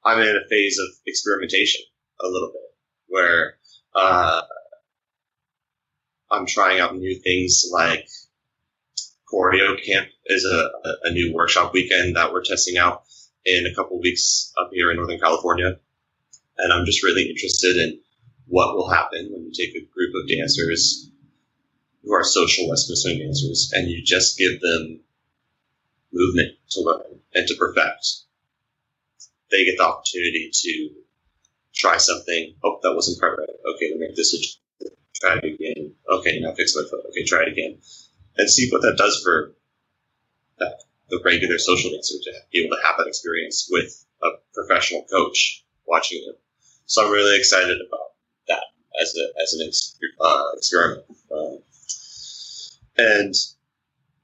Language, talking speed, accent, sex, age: English, 155 wpm, American, male, 30-49